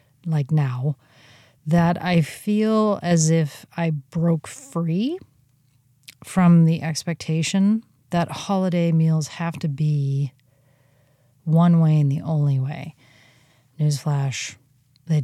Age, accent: 30-49, American